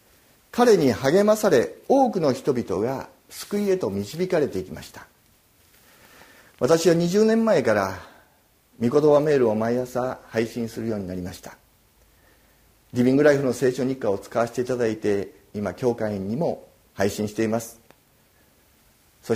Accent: native